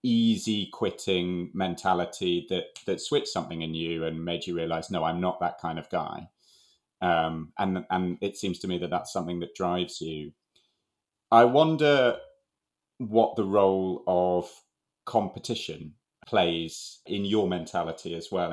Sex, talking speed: male, 150 wpm